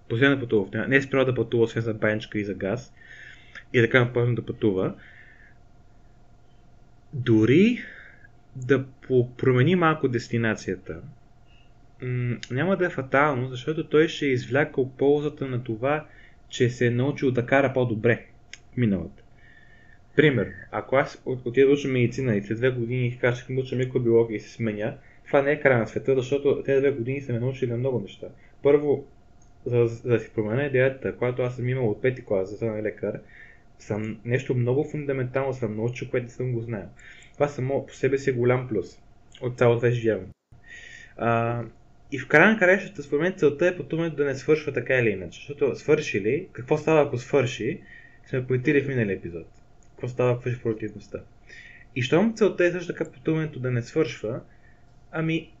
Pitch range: 115-140 Hz